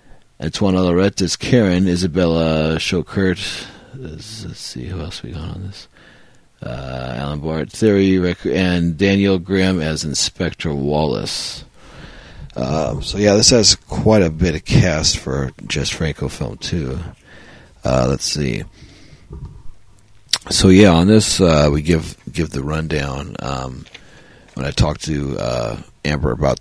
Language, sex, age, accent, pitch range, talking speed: English, male, 40-59, American, 75-95 Hz, 140 wpm